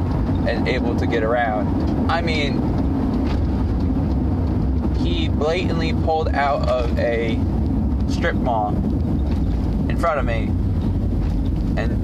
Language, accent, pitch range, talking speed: English, American, 80-100 Hz, 100 wpm